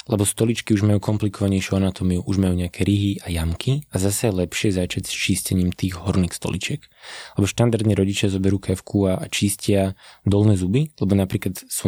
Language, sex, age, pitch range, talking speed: Slovak, male, 20-39, 95-110 Hz, 165 wpm